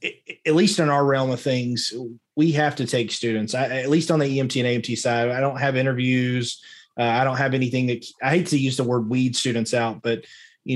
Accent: American